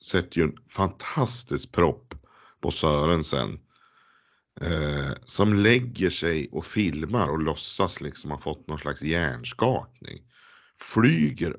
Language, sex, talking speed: Swedish, male, 115 wpm